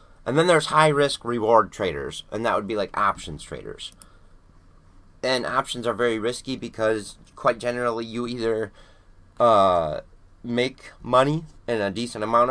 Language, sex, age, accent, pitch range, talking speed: English, male, 30-49, American, 90-120 Hz, 145 wpm